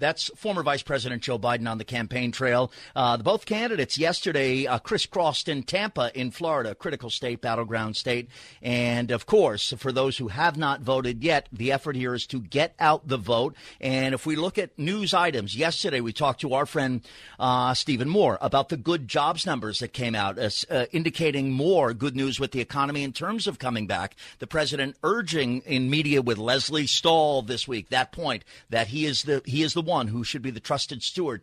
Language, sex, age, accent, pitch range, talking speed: English, male, 40-59, American, 125-150 Hz, 200 wpm